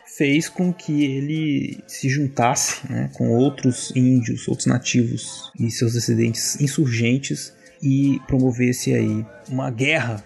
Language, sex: Portuguese, male